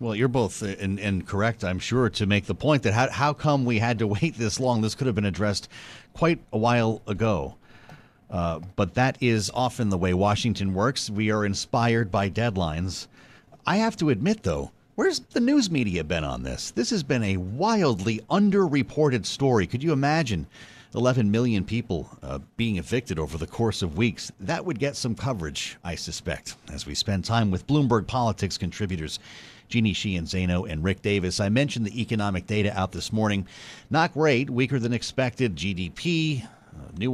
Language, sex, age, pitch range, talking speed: English, male, 40-59, 100-125 Hz, 185 wpm